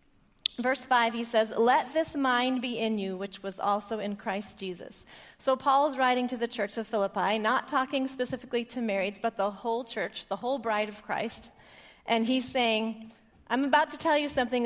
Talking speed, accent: 190 wpm, American